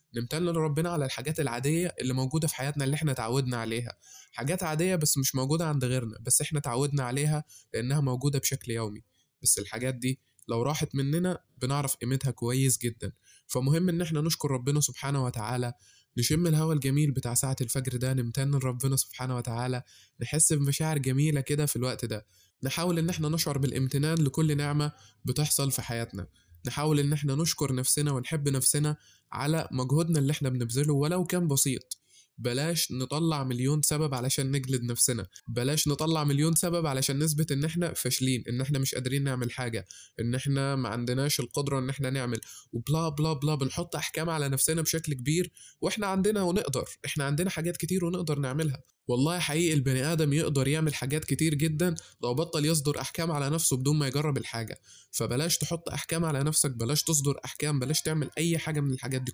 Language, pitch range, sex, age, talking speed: Arabic, 130-155 Hz, male, 20-39, 170 wpm